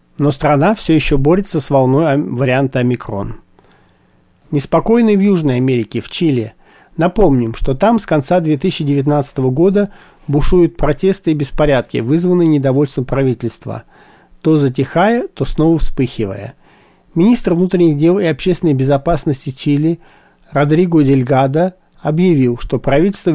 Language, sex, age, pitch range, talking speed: Russian, male, 40-59, 135-170 Hz, 120 wpm